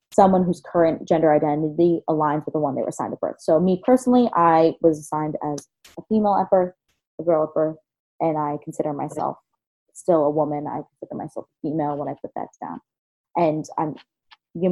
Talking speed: 195 wpm